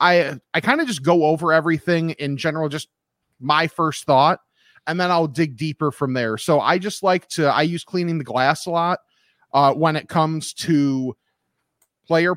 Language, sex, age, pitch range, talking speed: English, male, 30-49, 140-170 Hz, 195 wpm